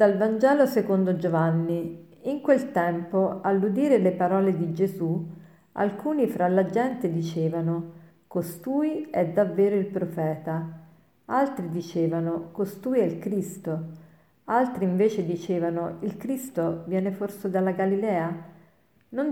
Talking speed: 120 wpm